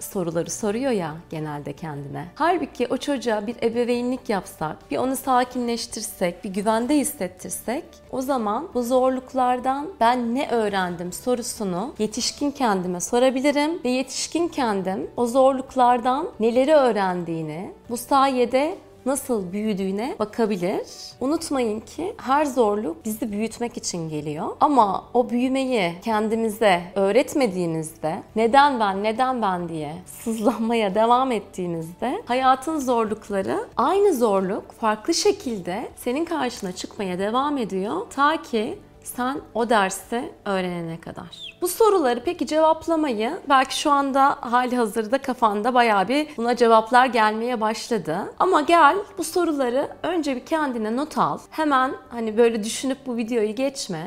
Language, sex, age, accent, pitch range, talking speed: Turkish, female, 40-59, native, 205-270 Hz, 125 wpm